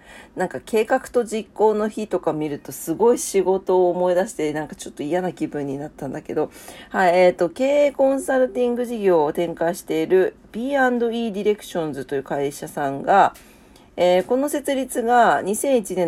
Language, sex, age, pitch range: Japanese, female, 40-59, 165-230 Hz